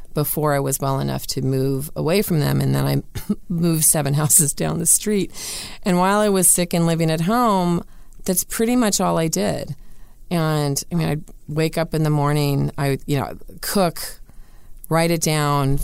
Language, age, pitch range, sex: English, 30-49, 140-165 Hz, female